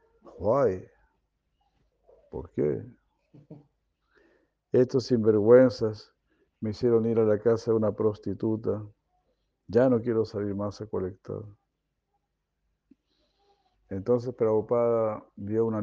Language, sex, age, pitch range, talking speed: Spanish, male, 50-69, 105-130 Hz, 95 wpm